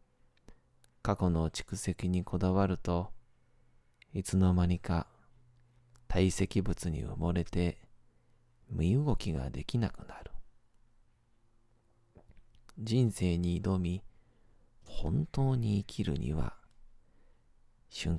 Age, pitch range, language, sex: 40-59, 90-110 Hz, Japanese, male